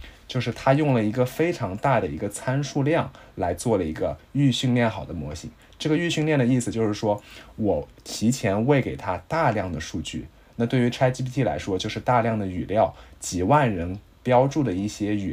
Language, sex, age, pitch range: Chinese, male, 20-39, 95-125 Hz